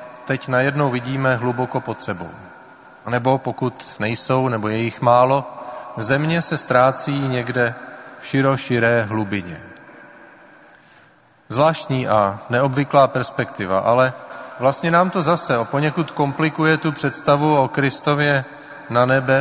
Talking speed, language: 115 wpm, Czech